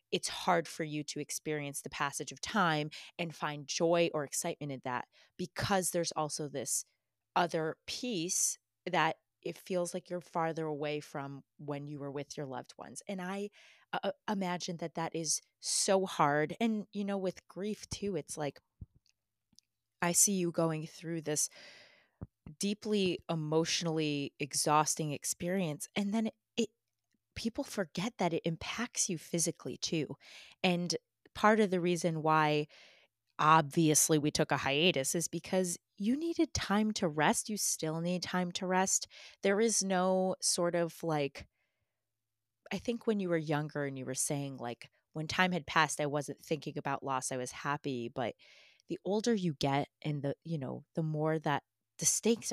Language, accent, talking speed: English, American, 165 wpm